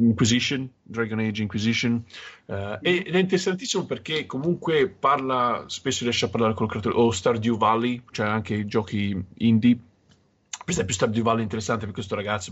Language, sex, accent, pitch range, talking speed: Italian, male, native, 105-120 Hz, 165 wpm